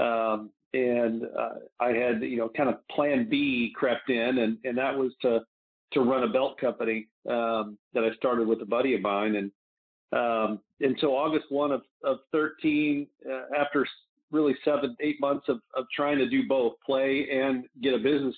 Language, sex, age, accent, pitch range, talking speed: English, male, 50-69, American, 115-140 Hz, 190 wpm